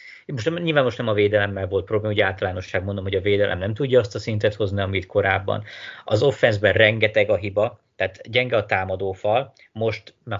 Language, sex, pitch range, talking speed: Hungarian, male, 100-130 Hz, 190 wpm